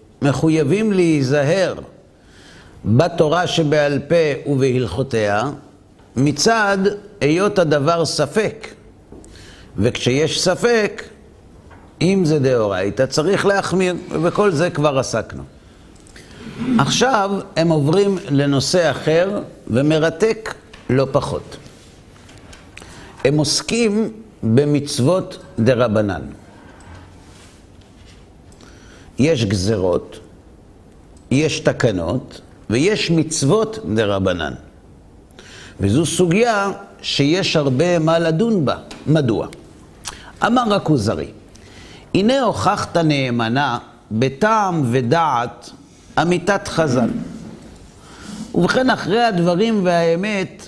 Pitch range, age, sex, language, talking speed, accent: 110-175 Hz, 50-69, male, Hebrew, 70 wpm, native